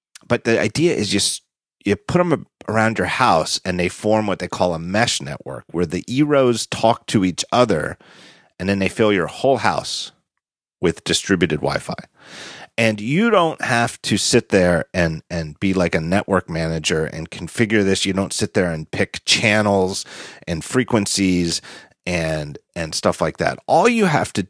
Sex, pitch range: male, 85-110 Hz